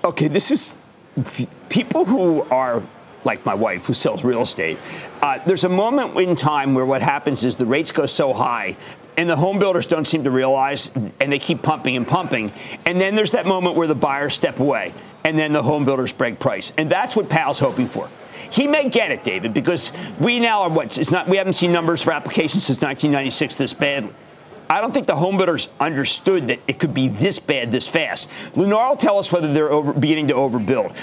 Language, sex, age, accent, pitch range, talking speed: English, male, 40-59, American, 140-185 Hz, 220 wpm